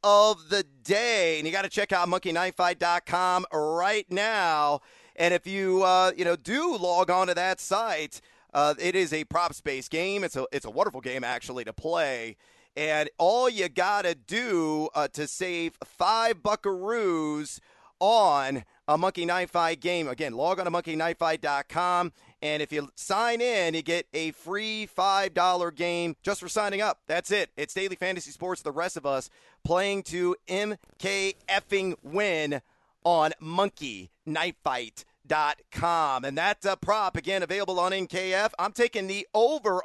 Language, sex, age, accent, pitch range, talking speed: English, male, 40-59, American, 160-195 Hz, 155 wpm